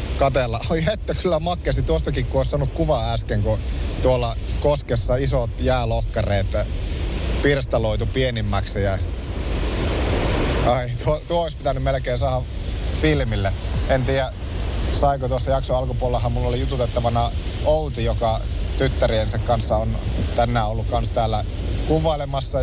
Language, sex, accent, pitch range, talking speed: Finnish, male, native, 95-125 Hz, 120 wpm